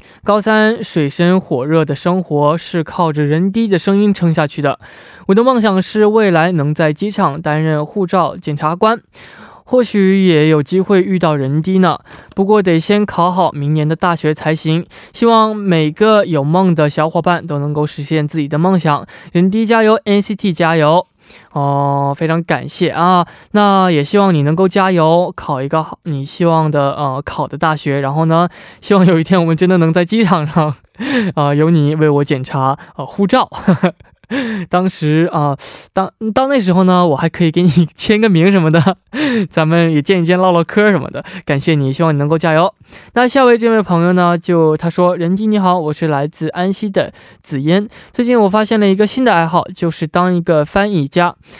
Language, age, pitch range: Korean, 20-39, 155-195 Hz